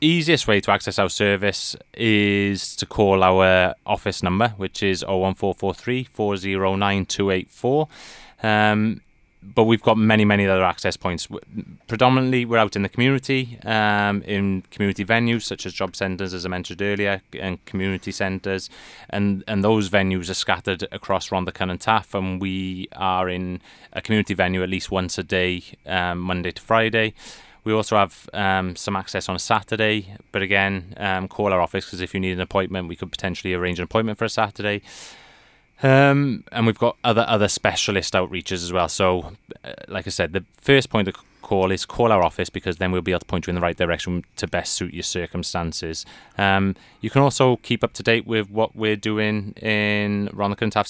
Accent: British